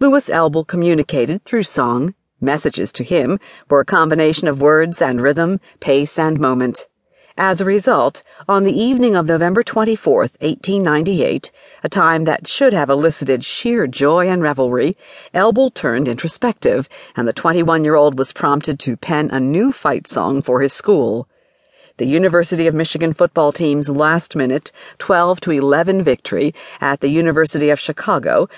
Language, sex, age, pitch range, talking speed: English, female, 50-69, 145-185 Hz, 150 wpm